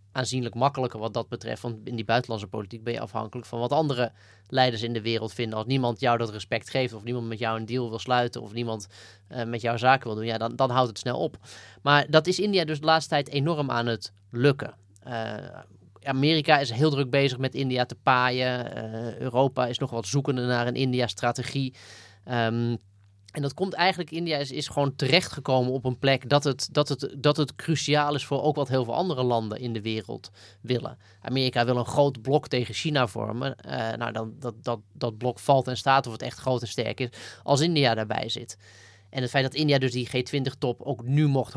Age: 20-39